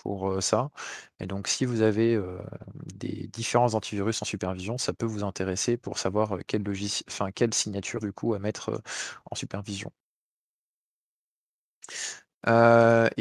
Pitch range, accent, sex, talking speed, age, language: 100-120 Hz, French, male, 145 wpm, 20-39, French